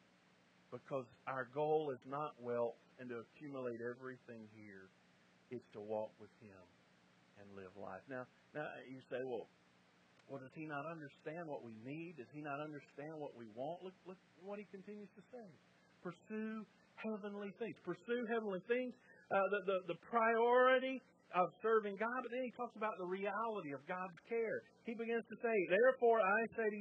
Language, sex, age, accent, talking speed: English, male, 50-69, American, 175 wpm